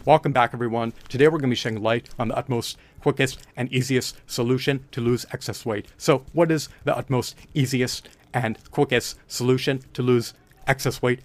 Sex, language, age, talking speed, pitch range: male, English, 40-59, 180 wpm, 120-140 Hz